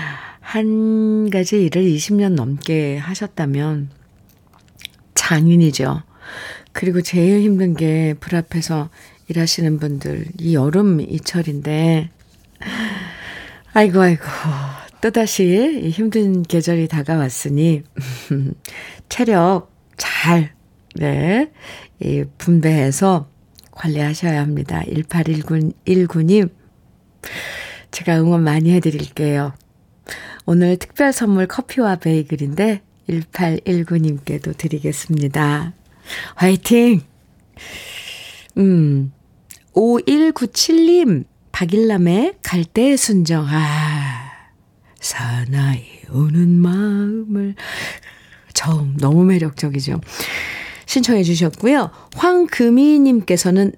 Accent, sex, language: native, female, Korean